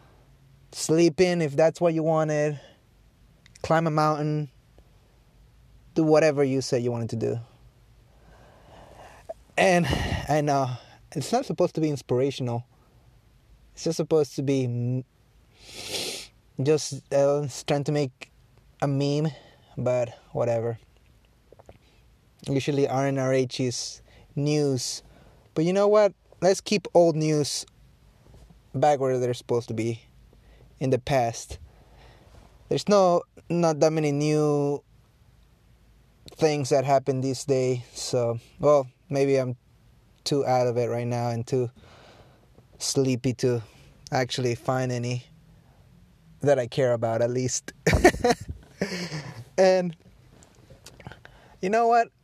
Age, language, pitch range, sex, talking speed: 20-39, English, 120-155 Hz, male, 115 wpm